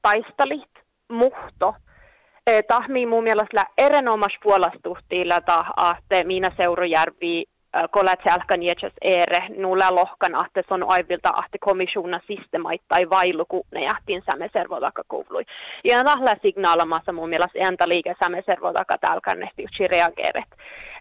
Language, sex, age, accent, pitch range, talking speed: Finnish, female, 30-49, native, 185-230 Hz, 110 wpm